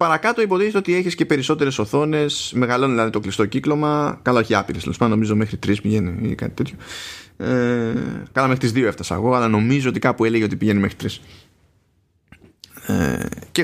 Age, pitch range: 20-39, 105-130 Hz